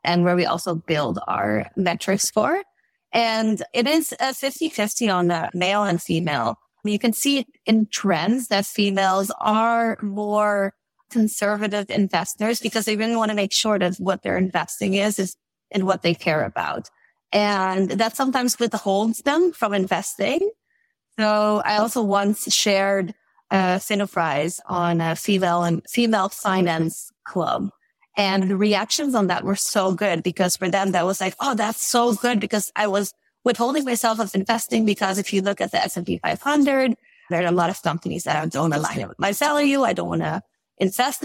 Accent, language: American, English